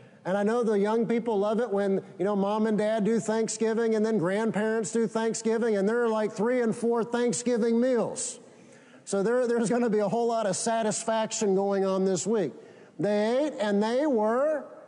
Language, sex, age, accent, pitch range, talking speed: English, male, 50-69, American, 195-235 Hz, 195 wpm